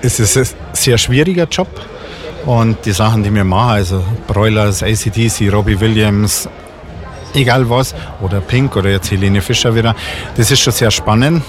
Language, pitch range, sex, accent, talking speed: German, 105-120 Hz, male, German, 160 wpm